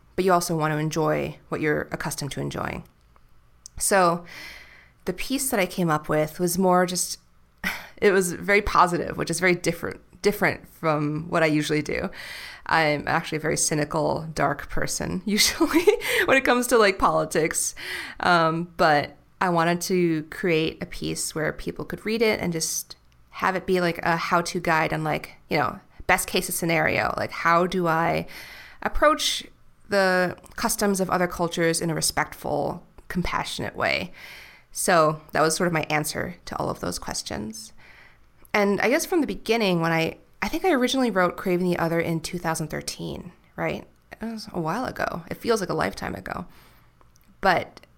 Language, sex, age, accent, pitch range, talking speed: English, female, 30-49, American, 155-190 Hz, 175 wpm